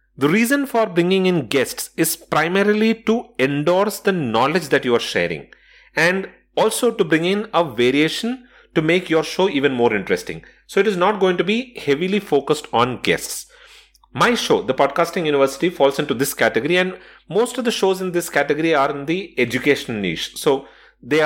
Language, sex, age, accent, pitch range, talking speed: English, male, 30-49, Indian, 150-210 Hz, 185 wpm